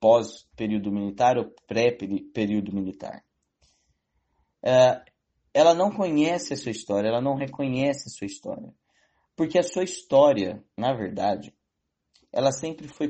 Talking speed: 125 wpm